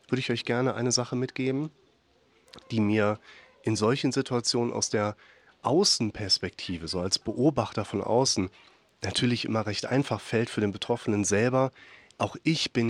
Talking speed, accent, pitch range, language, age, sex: 150 wpm, German, 110-130 Hz, German, 30-49, male